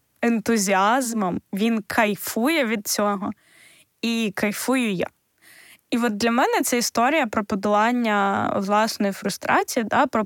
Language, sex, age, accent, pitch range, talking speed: Ukrainian, female, 20-39, native, 205-260 Hz, 115 wpm